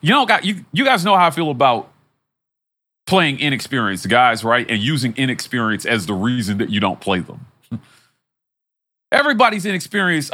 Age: 40-59